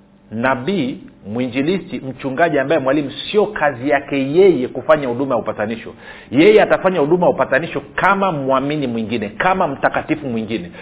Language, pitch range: Swahili, 120-155 Hz